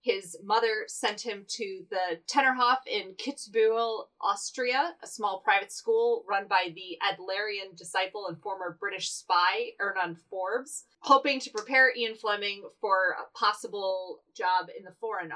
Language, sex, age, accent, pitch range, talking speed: English, female, 30-49, American, 185-270 Hz, 145 wpm